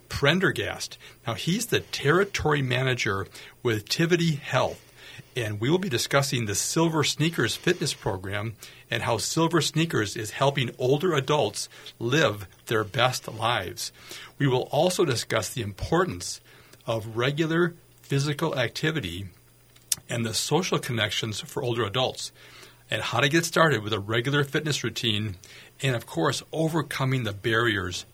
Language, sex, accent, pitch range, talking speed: English, male, American, 110-145 Hz, 135 wpm